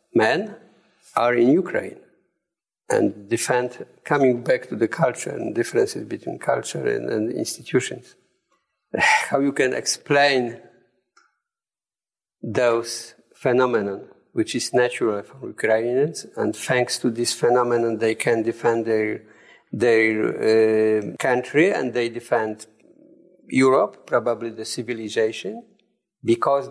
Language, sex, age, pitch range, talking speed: English, male, 50-69, 115-155 Hz, 110 wpm